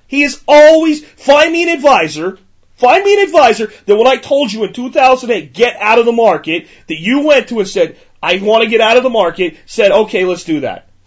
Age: 30-49